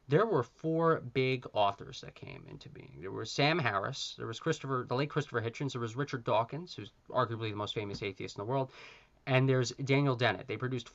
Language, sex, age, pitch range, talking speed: English, male, 20-39, 115-140 Hz, 215 wpm